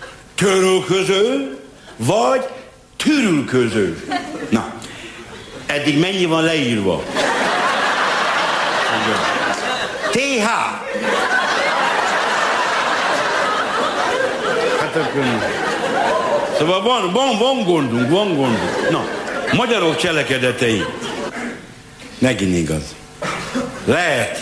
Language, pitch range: Hungarian, 115-185 Hz